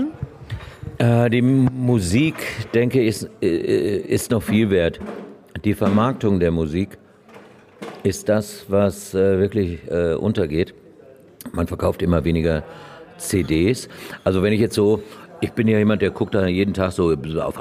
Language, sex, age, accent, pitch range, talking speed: German, male, 60-79, German, 85-105 Hz, 135 wpm